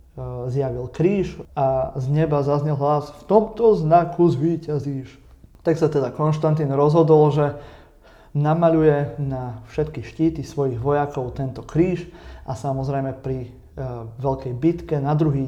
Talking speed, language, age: 130 wpm, Slovak, 30-49